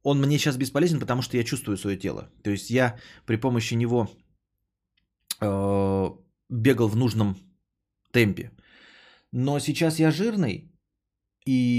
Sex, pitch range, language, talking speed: male, 100-130 Hz, Bulgarian, 130 wpm